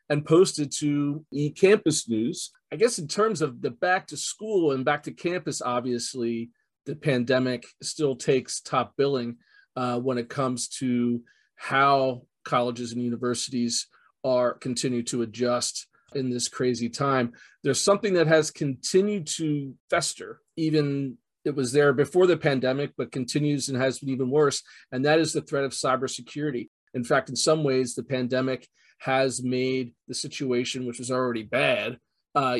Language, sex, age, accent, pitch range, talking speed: English, male, 40-59, American, 125-150 Hz, 160 wpm